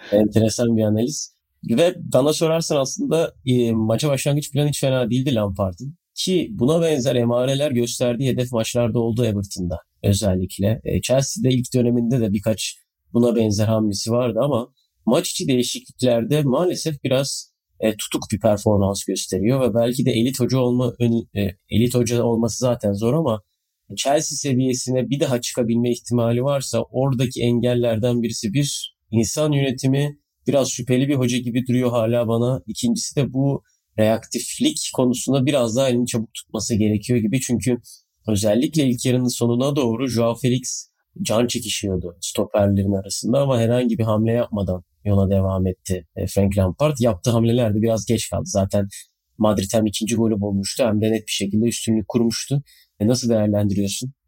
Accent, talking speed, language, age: native, 150 wpm, Turkish, 30-49